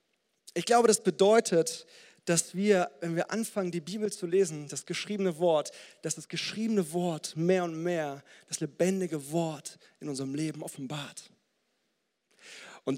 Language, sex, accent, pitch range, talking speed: German, male, German, 170-210 Hz, 145 wpm